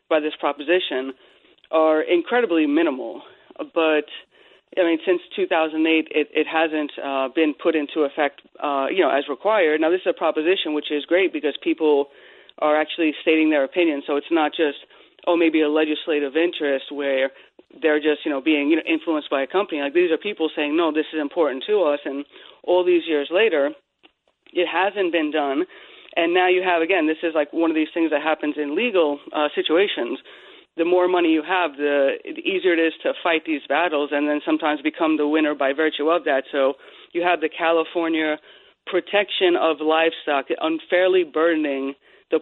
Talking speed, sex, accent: 185 wpm, female, American